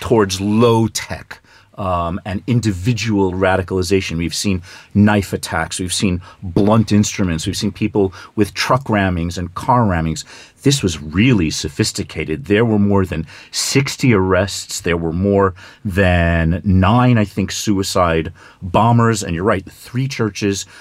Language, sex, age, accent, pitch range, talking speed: English, male, 40-59, American, 95-125 Hz, 140 wpm